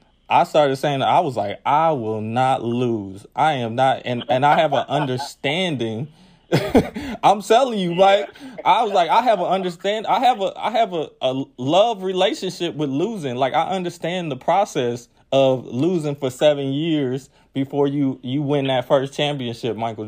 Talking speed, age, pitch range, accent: 180 wpm, 20-39, 125-165 Hz, American